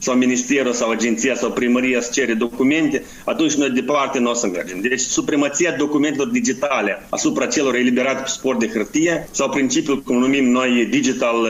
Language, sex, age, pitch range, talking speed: Romanian, male, 30-49, 120-150 Hz, 170 wpm